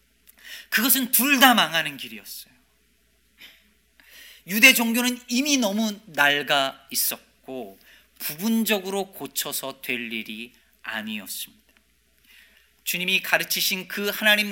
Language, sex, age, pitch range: Korean, male, 40-59, 135-205 Hz